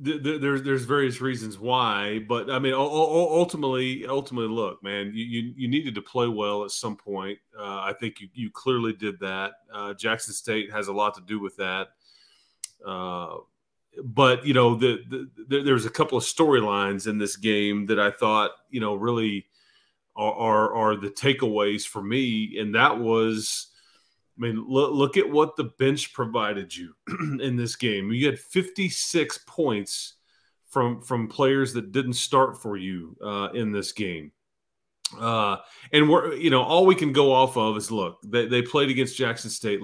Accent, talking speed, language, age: American, 175 wpm, English, 30-49